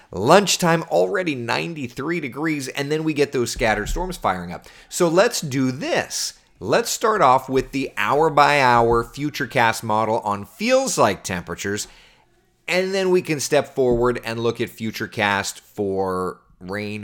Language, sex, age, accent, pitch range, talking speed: English, male, 30-49, American, 105-145 Hz, 140 wpm